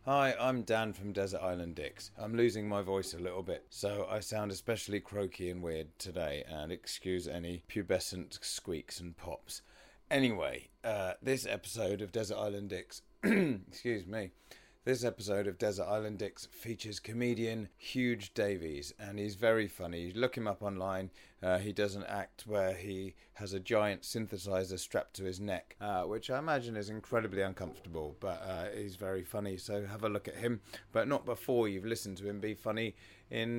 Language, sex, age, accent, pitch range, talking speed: English, male, 30-49, British, 95-115 Hz, 180 wpm